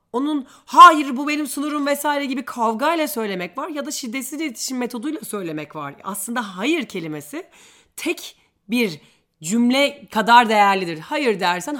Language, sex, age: Turkish, female, 30-49